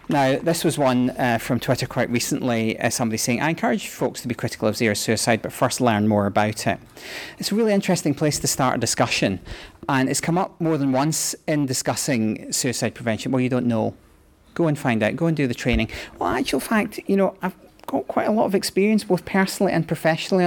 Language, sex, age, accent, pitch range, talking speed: English, male, 30-49, British, 115-150 Hz, 225 wpm